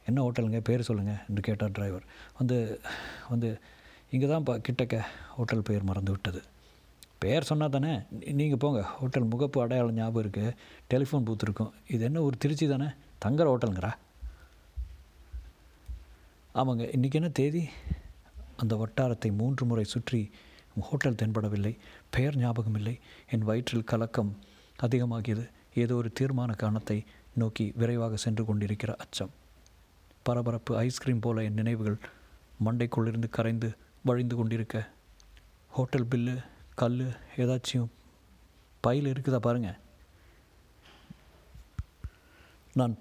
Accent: native